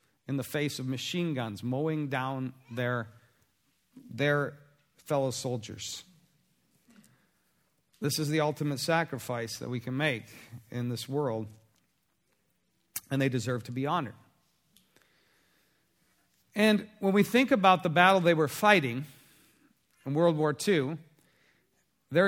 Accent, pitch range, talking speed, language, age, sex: American, 140-205 Hz, 120 wpm, English, 50-69, male